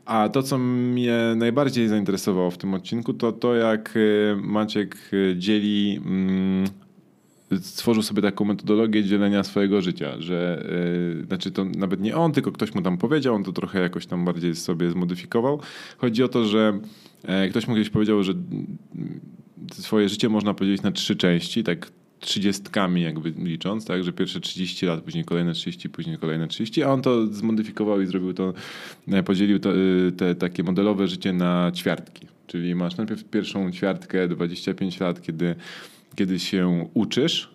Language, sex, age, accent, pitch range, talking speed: Polish, male, 20-39, native, 90-105 Hz, 155 wpm